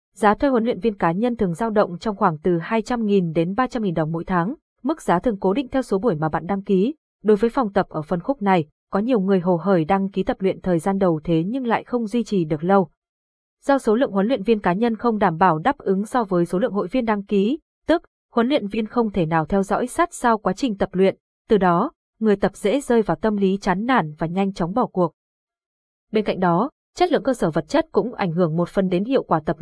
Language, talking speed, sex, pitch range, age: Vietnamese, 260 wpm, female, 185-235 Hz, 20-39